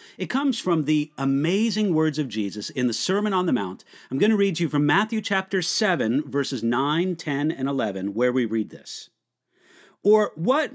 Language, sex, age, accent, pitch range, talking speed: English, male, 50-69, American, 150-220 Hz, 195 wpm